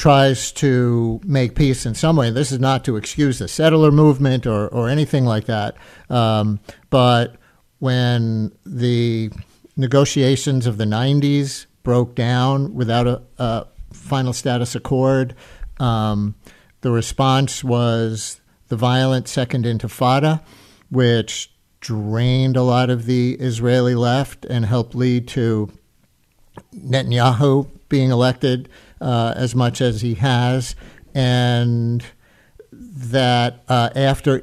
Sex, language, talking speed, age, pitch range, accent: male, English, 120 wpm, 50-69, 120-135 Hz, American